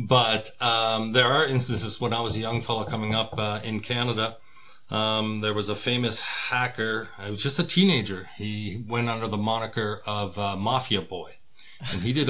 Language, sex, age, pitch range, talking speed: English, male, 40-59, 100-120 Hz, 190 wpm